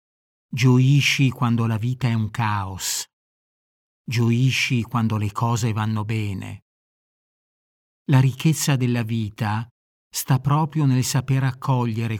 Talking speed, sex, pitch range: 110 wpm, male, 110-140 Hz